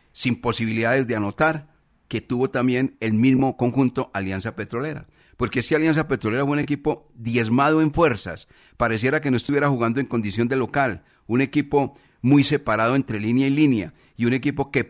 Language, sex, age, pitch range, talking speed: Spanish, male, 40-59, 110-140 Hz, 175 wpm